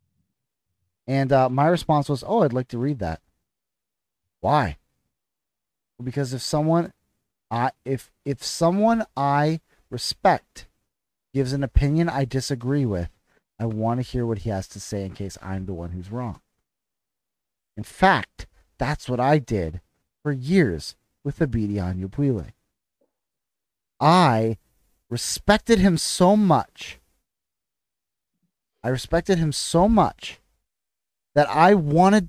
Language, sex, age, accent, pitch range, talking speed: English, male, 40-59, American, 100-165 Hz, 125 wpm